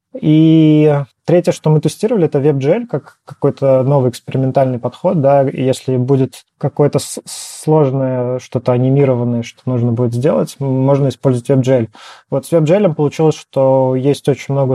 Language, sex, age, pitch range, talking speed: Russian, male, 20-39, 130-150 Hz, 140 wpm